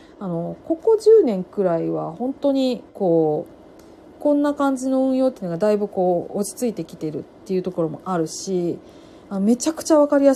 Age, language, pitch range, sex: 40-59, Japanese, 175-285 Hz, female